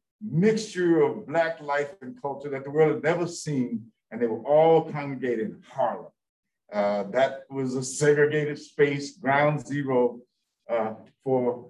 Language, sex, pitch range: English, male, 135-185 Hz